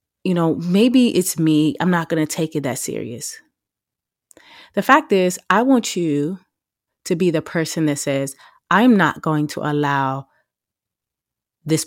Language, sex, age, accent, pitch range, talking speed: English, female, 30-49, American, 140-175 Hz, 155 wpm